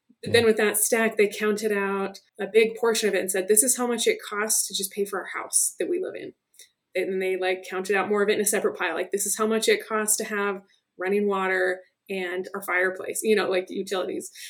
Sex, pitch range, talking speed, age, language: female, 195-225 Hz, 255 wpm, 20-39, English